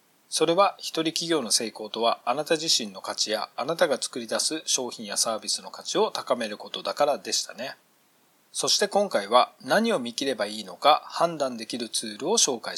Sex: male